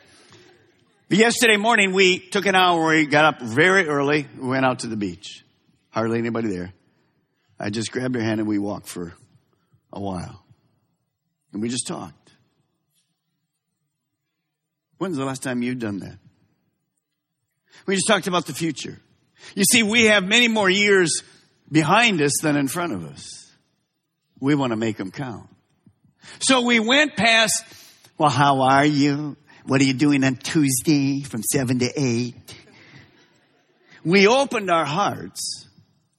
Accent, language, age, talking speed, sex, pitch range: American, English, 50-69, 150 wpm, male, 140-215 Hz